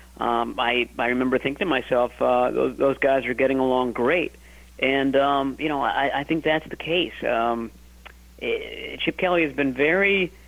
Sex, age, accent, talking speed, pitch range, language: male, 40-59, American, 180 wpm, 115-140 Hz, English